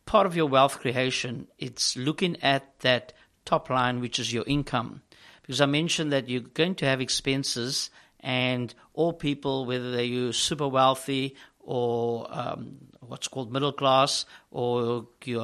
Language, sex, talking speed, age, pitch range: English, male, 155 wpm, 60-79, 125-140 Hz